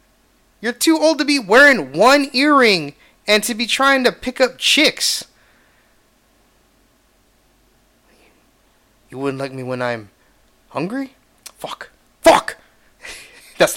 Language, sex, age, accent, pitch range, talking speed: English, male, 30-49, American, 130-175 Hz, 115 wpm